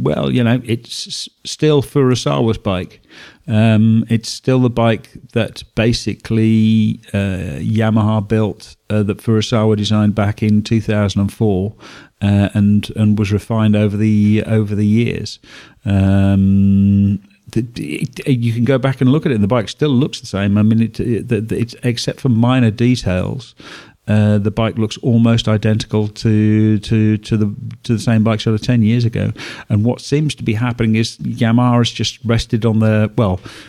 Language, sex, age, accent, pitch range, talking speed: English, male, 50-69, British, 105-120 Hz, 180 wpm